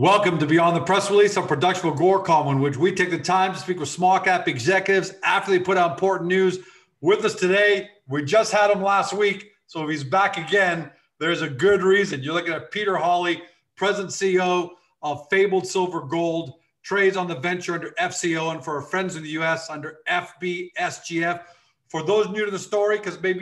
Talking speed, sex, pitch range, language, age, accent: 210 wpm, male, 160-190 Hz, English, 40-59, American